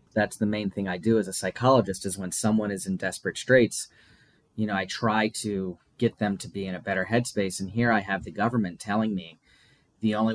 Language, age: English, 30-49